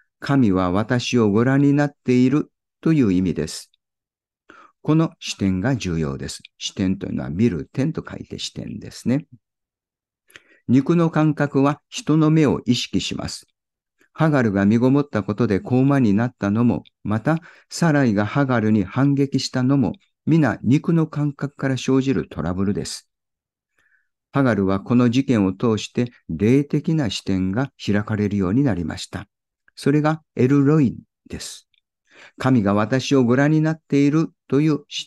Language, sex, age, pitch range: Japanese, male, 50-69, 105-140 Hz